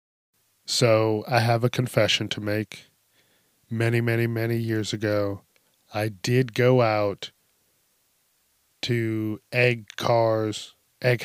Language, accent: English, American